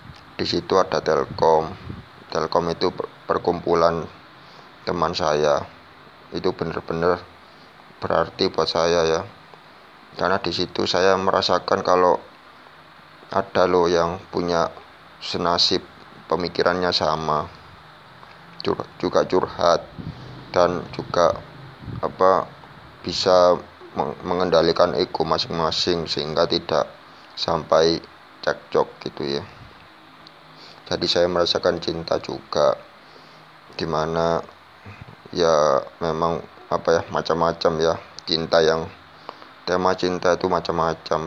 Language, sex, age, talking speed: Indonesian, male, 20-39, 90 wpm